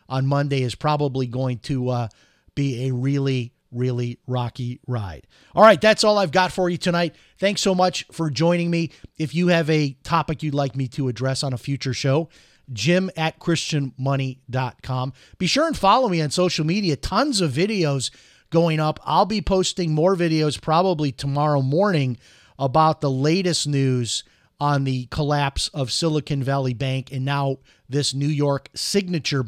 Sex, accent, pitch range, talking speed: male, American, 135-170 Hz, 170 wpm